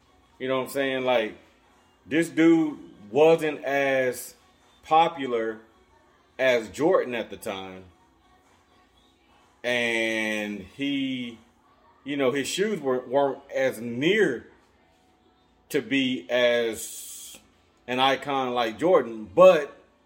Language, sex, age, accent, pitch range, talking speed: English, male, 30-49, American, 120-145 Hz, 100 wpm